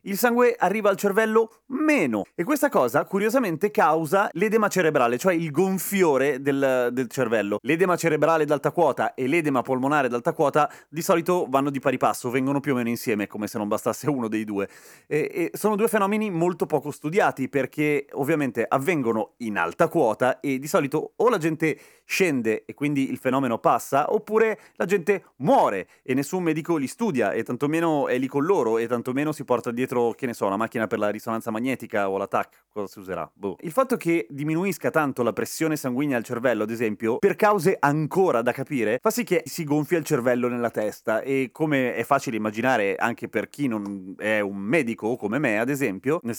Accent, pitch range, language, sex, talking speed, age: native, 120-175 Hz, Italian, male, 195 wpm, 30-49